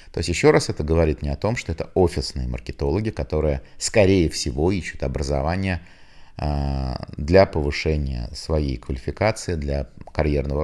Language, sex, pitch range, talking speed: Russian, male, 70-90 Hz, 140 wpm